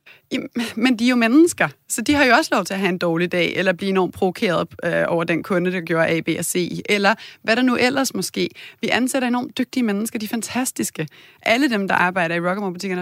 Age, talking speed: 30-49, 240 wpm